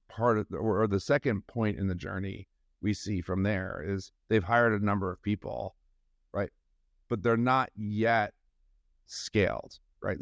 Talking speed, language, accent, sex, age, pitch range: 165 wpm, English, American, male, 40-59, 90-110 Hz